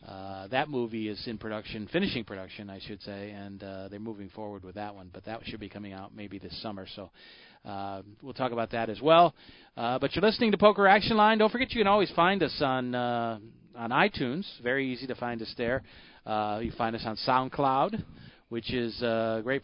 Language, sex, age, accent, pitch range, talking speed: English, male, 40-59, American, 105-145 Hz, 215 wpm